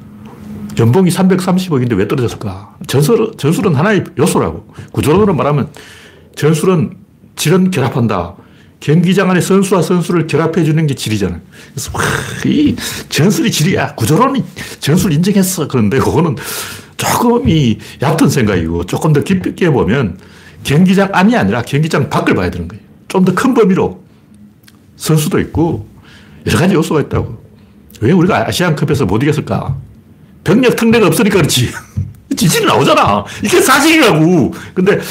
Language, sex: Korean, male